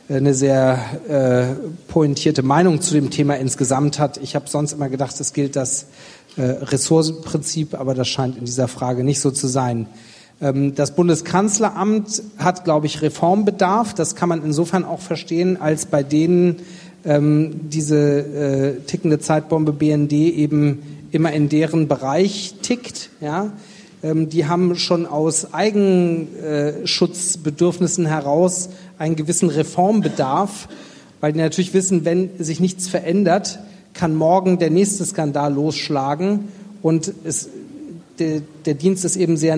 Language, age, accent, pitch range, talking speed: German, 40-59, German, 145-175 Hz, 135 wpm